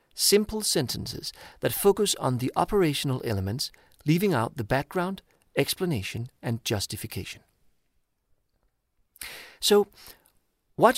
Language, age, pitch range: English, 50-69, 110-175 Hz